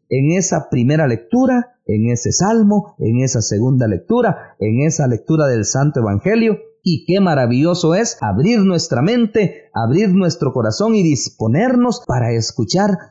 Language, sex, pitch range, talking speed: English, male, 120-185 Hz, 140 wpm